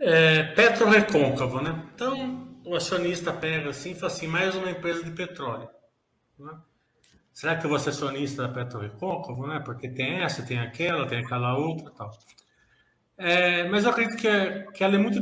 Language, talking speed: Portuguese, 180 wpm